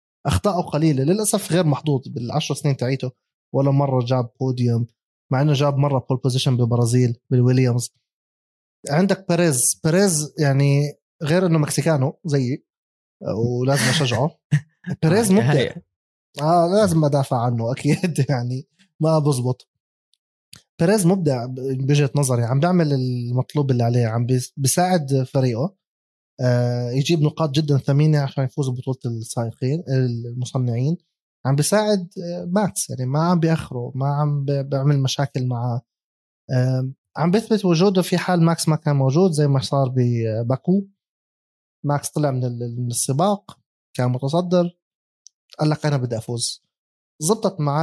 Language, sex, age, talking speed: Arabic, male, 20-39, 125 wpm